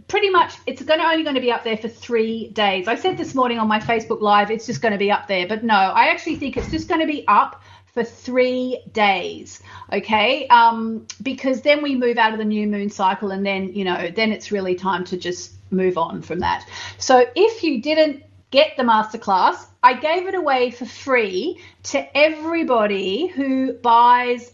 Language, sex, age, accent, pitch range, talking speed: English, female, 40-59, Australian, 200-270 Hz, 210 wpm